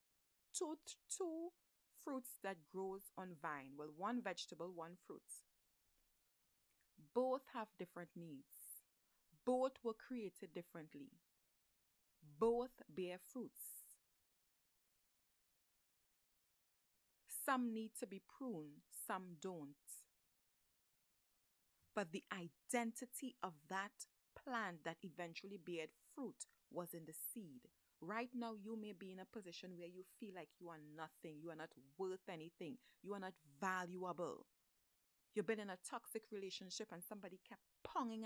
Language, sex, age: English, female, 30-49